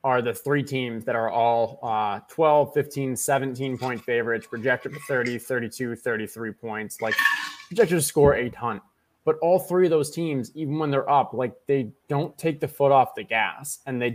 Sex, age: male, 20-39